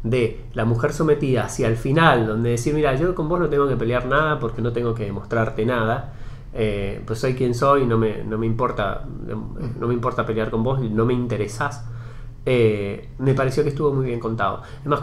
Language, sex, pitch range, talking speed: Spanish, male, 115-145 Hz, 210 wpm